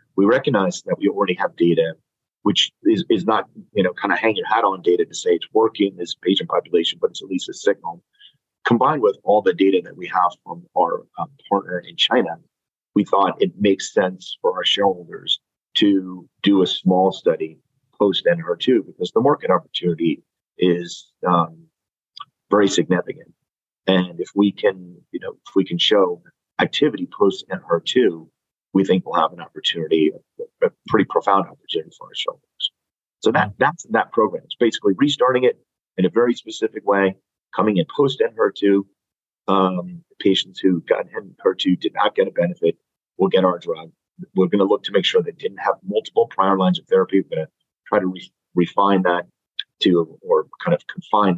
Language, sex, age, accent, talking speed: English, male, 40-59, American, 190 wpm